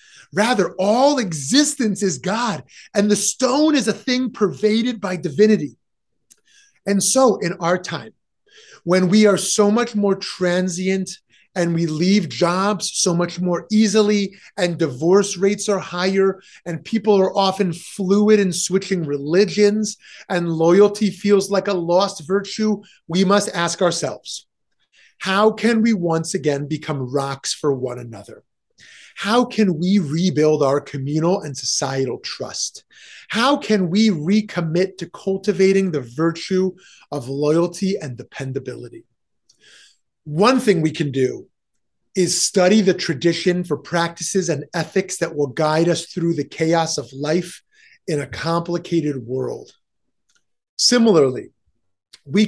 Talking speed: 135 wpm